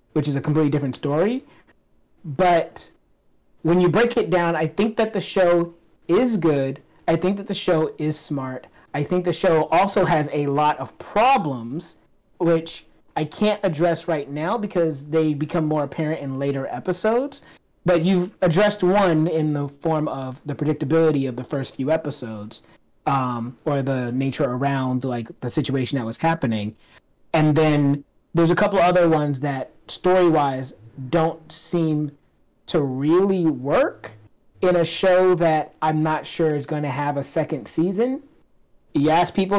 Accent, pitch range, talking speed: American, 145-180 Hz, 160 wpm